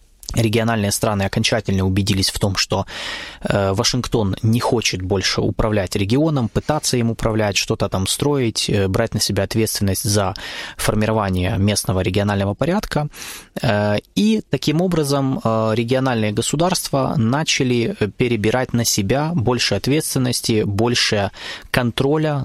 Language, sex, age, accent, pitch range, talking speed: Russian, male, 20-39, native, 105-135 Hz, 110 wpm